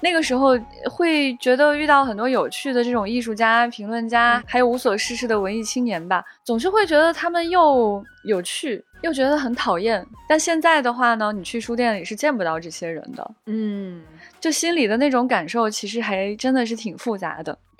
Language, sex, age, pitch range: Chinese, female, 20-39, 200-260 Hz